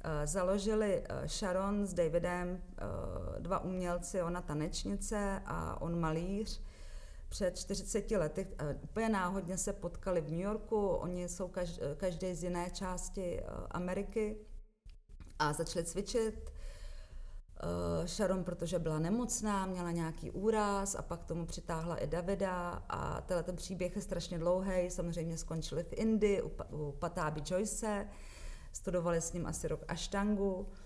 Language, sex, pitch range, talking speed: Czech, female, 160-190 Hz, 125 wpm